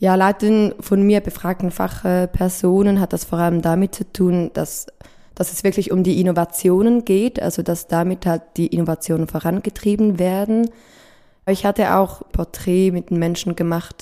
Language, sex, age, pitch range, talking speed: German, female, 20-39, 170-195 Hz, 160 wpm